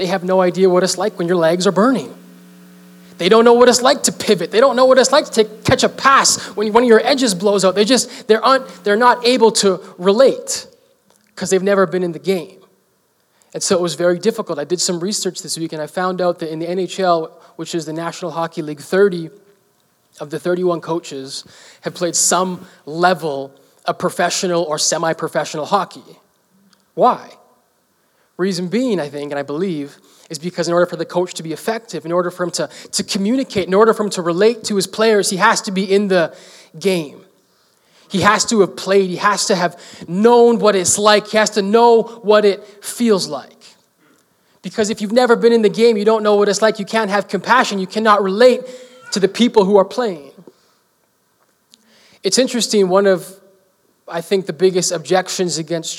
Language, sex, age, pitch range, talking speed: English, male, 20-39, 175-215 Hz, 205 wpm